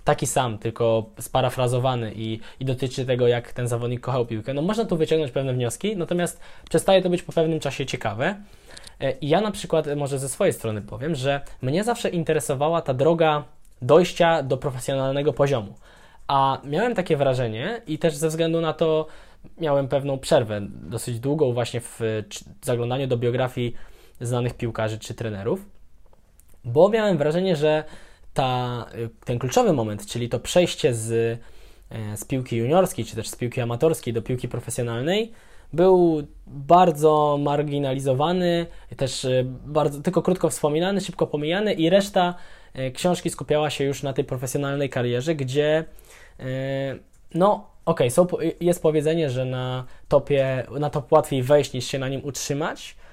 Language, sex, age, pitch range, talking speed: Polish, male, 10-29, 125-165 Hz, 150 wpm